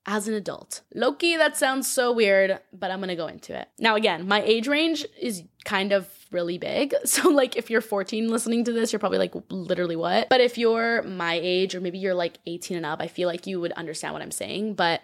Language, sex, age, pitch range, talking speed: English, female, 10-29, 185-240 Hz, 235 wpm